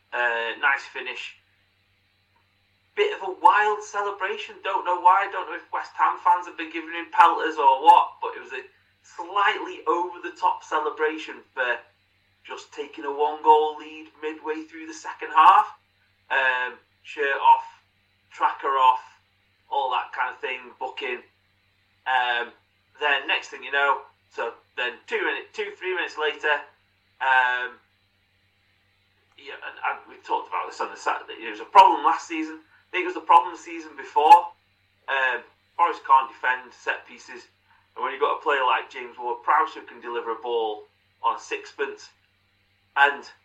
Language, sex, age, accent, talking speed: English, male, 30-49, British, 165 wpm